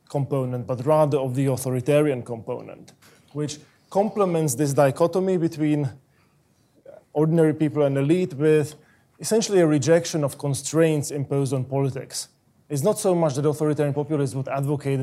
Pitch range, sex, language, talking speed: 130-150 Hz, male, English, 135 wpm